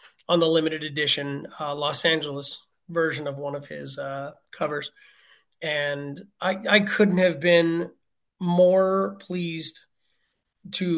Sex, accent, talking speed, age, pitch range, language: male, American, 125 wpm, 30-49, 150-180 Hz, English